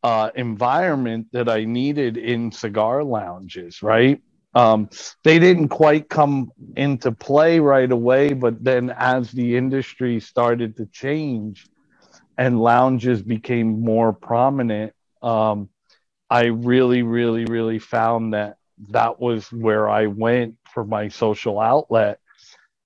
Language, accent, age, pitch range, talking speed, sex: English, American, 50-69, 110-130 Hz, 125 wpm, male